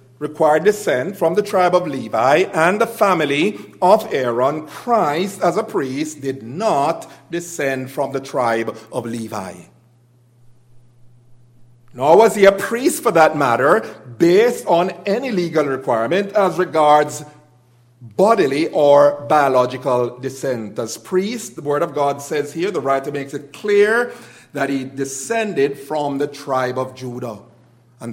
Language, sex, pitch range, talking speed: English, male, 130-180 Hz, 140 wpm